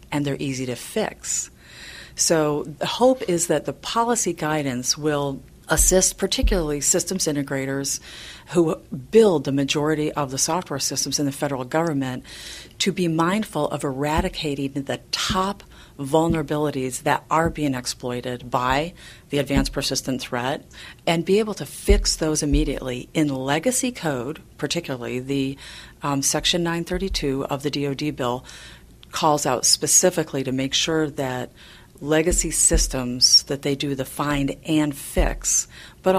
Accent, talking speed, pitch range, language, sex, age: American, 140 wpm, 135-165 Hz, English, female, 40-59